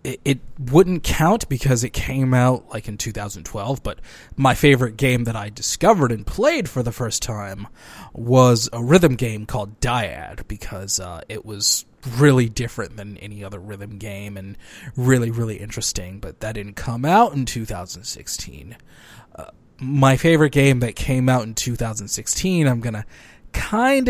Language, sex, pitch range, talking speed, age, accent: English, male, 105-135 Hz, 160 wpm, 20-39, American